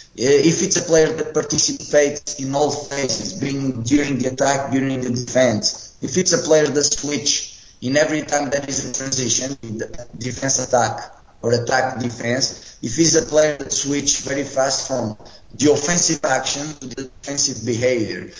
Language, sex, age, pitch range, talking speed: Swedish, male, 20-39, 125-150 Hz, 170 wpm